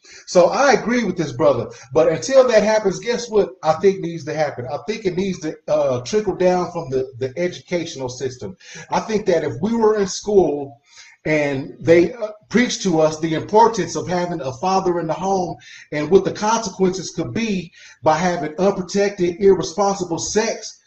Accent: American